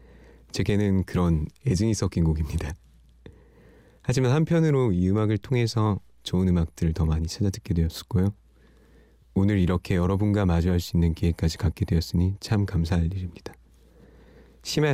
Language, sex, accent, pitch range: Korean, male, native, 80-100 Hz